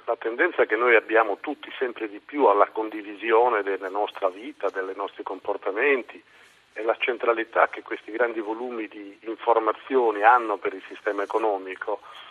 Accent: native